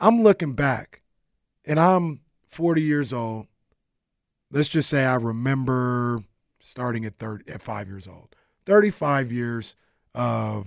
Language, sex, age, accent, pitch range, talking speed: English, male, 30-49, American, 120-180 Hz, 130 wpm